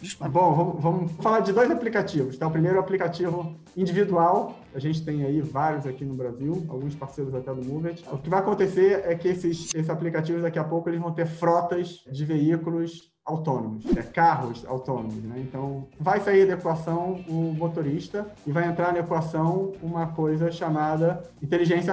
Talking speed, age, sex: 185 wpm, 20-39, male